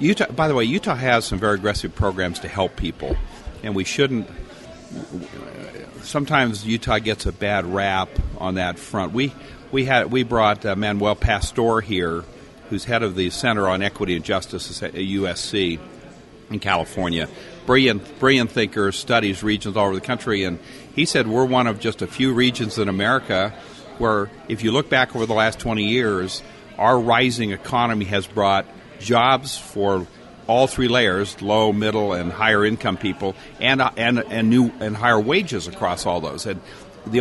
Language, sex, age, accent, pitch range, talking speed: English, male, 50-69, American, 95-125 Hz, 170 wpm